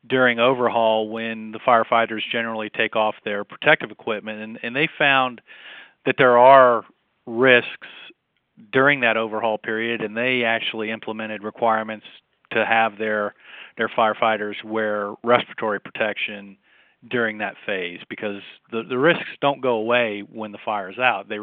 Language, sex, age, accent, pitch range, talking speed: English, male, 40-59, American, 110-120 Hz, 145 wpm